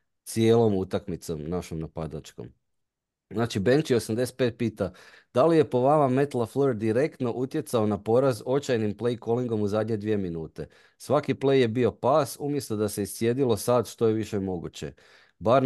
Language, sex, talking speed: Croatian, male, 155 wpm